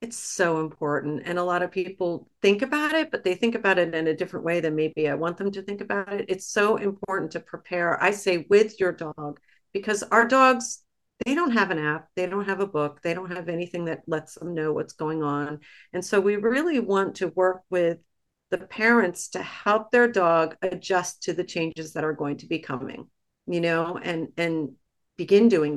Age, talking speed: 40-59, 215 wpm